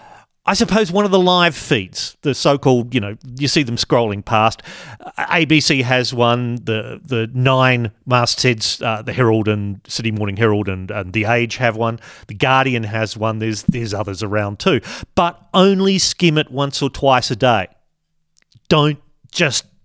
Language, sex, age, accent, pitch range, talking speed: English, male, 40-59, Australian, 120-165 Hz, 170 wpm